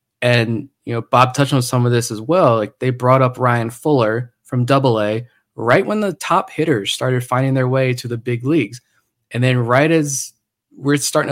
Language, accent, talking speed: English, American, 200 wpm